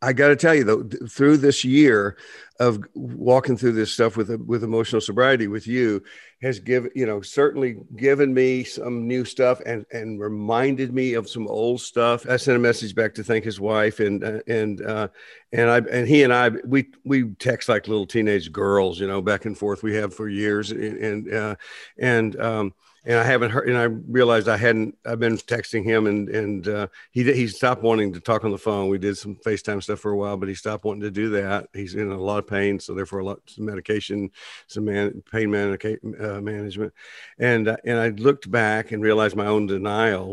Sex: male